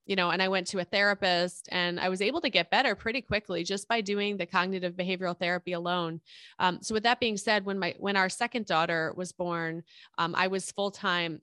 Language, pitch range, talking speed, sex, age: English, 175-205 Hz, 225 wpm, female, 20-39